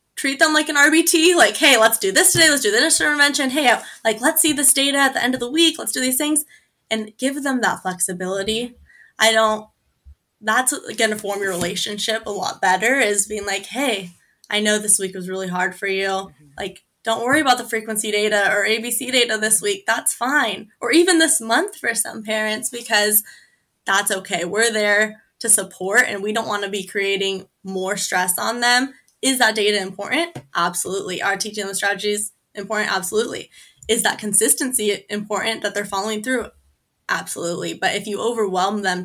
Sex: female